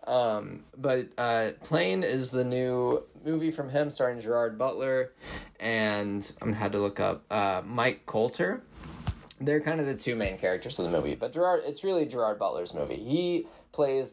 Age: 20-39